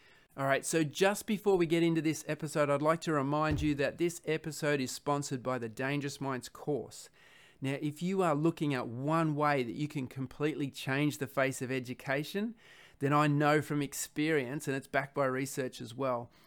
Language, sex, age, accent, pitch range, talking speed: English, male, 30-49, Australian, 130-150 Hz, 195 wpm